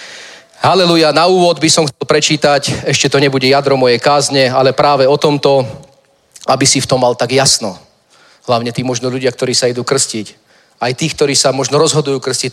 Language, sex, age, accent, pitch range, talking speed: Czech, male, 30-49, native, 130-145 Hz, 185 wpm